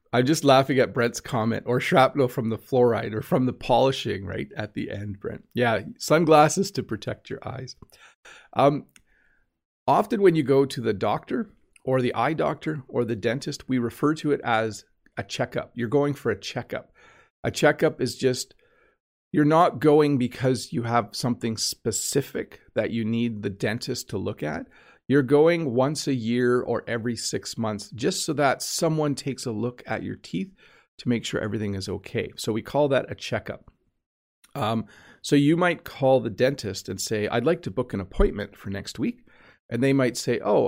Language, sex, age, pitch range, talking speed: English, male, 40-59, 115-140 Hz, 185 wpm